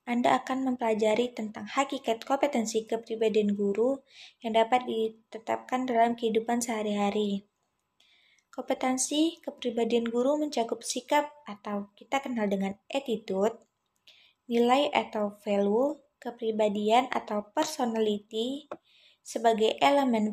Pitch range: 210-250 Hz